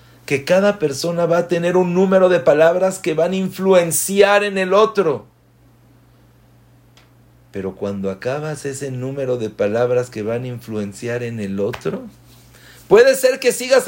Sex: male